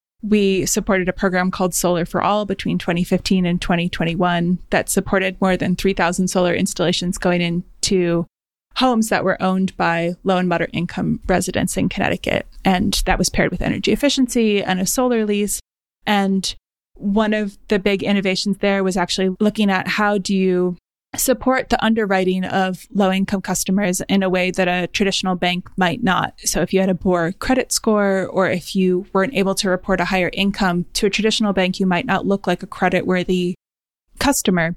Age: 20-39